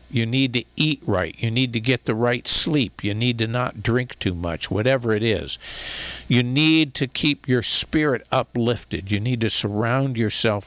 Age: 50-69